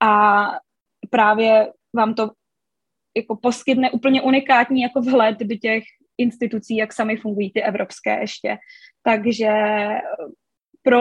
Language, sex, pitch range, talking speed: Czech, female, 215-250 Hz, 115 wpm